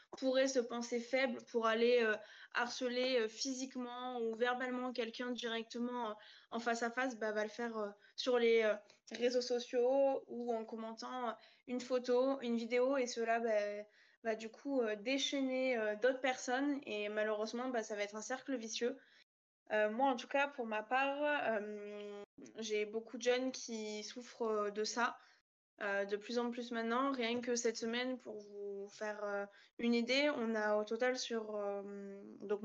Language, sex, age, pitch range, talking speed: French, female, 20-39, 215-250 Hz, 180 wpm